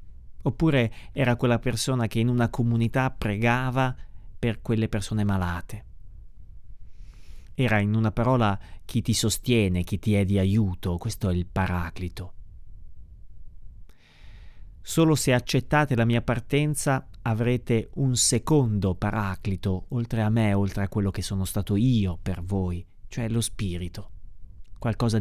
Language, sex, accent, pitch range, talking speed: Italian, male, native, 95-125 Hz, 130 wpm